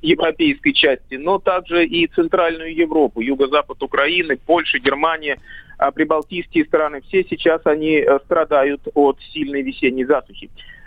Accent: native